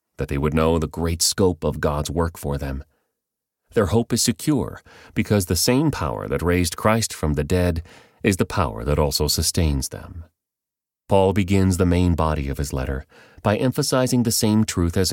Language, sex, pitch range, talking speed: English, male, 80-105 Hz, 185 wpm